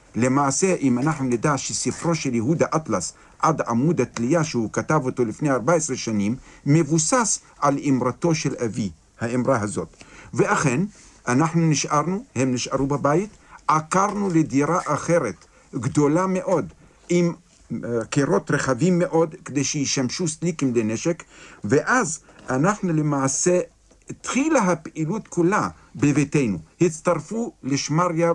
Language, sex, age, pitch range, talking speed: Hebrew, male, 50-69, 130-170 Hz, 110 wpm